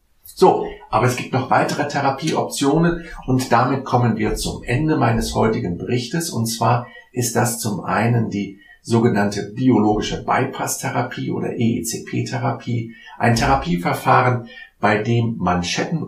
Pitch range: 110-135 Hz